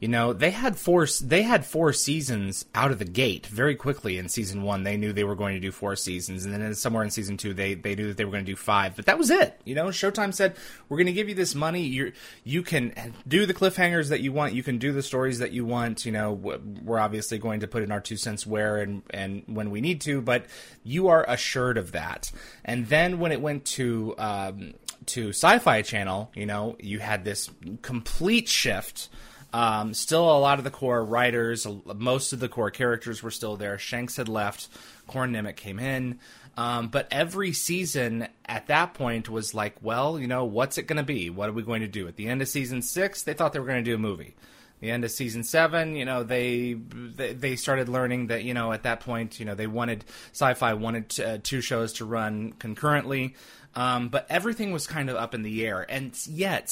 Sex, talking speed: male, 235 wpm